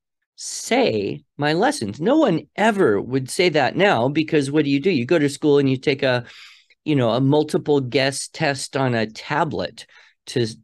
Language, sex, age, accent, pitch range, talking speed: English, male, 40-59, American, 125-155 Hz, 185 wpm